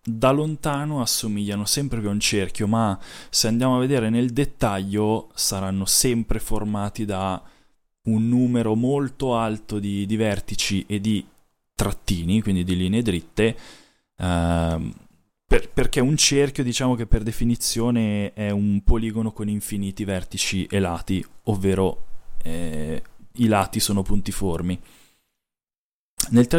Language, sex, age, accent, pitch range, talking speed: Italian, male, 20-39, native, 100-120 Hz, 130 wpm